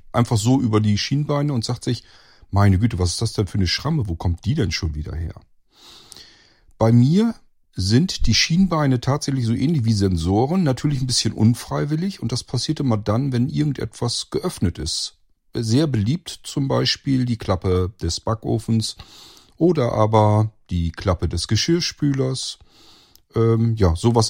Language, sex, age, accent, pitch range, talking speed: German, male, 40-59, German, 100-125 Hz, 155 wpm